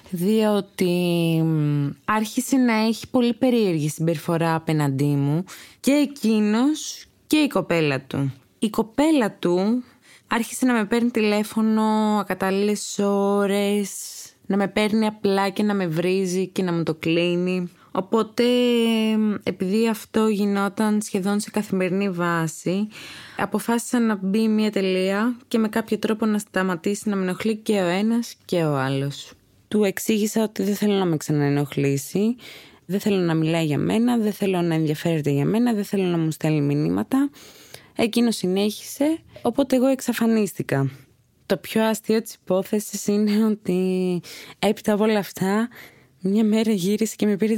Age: 20-39